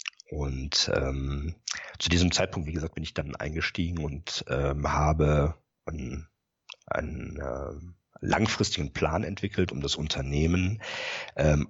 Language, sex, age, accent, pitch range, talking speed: German, male, 50-69, German, 75-100 Hz, 125 wpm